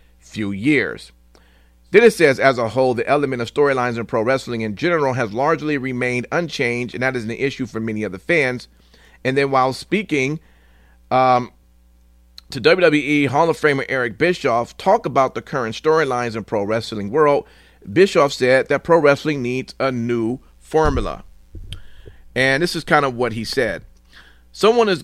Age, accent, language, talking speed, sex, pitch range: 40-59, American, English, 170 wpm, male, 95-135 Hz